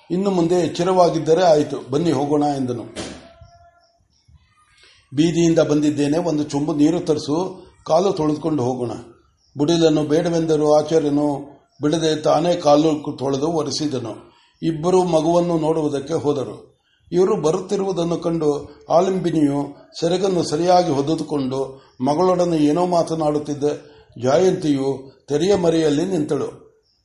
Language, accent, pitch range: Kannada, native, 150-185 Hz